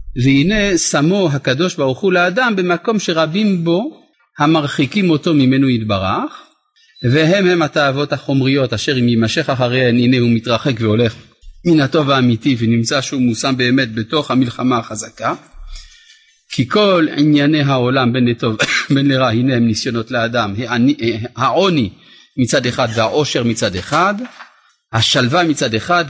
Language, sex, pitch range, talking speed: Hebrew, male, 120-175 Hz, 130 wpm